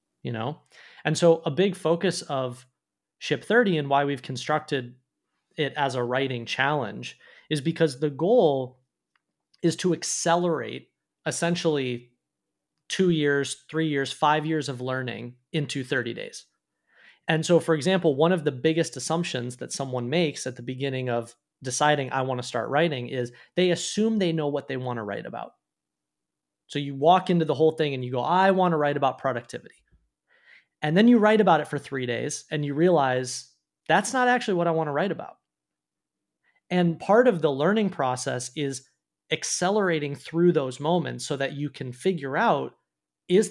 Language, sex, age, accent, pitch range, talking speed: English, male, 30-49, American, 130-170 Hz, 175 wpm